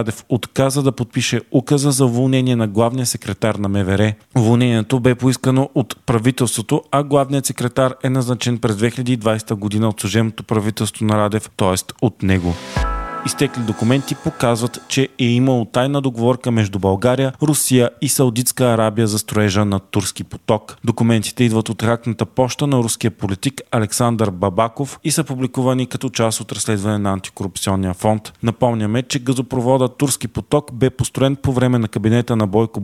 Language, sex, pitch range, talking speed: Bulgarian, male, 110-135 Hz, 155 wpm